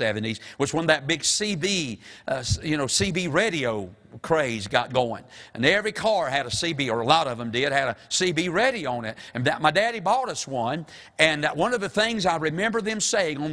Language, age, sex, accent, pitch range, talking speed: English, 50-69, male, American, 145-200 Hz, 215 wpm